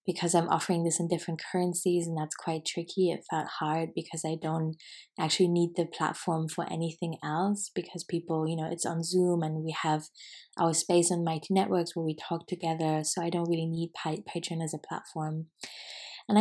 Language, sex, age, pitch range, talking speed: English, female, 20-39, 165-190 Hz, 195 wpm